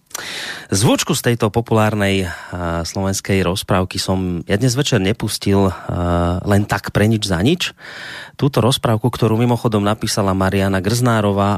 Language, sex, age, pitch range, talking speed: Slovak, male, 30-49, 100-120 Hz, 135 wpm